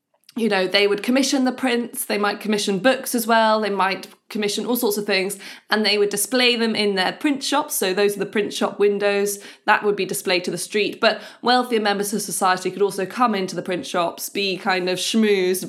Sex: female